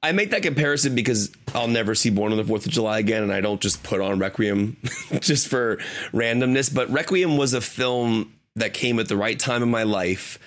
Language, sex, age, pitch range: English, male, 30-49, 100-125 Hz